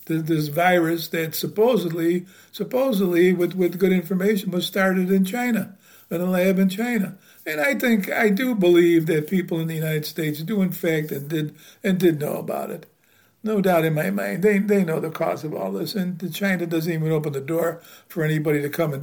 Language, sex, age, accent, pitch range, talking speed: English, male, 60-79, American, 165-200 Hz, 200 wpm